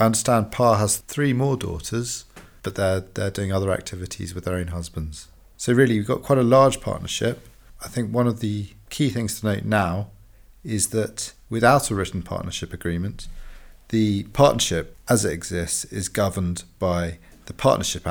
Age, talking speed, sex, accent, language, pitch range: 40-59, 170 wpm, male, British, English, 95-120 Hz